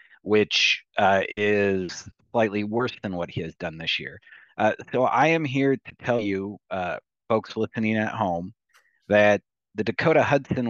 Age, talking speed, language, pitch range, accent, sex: 30-49, 165 wpm, English, 95-110 Hz, American, male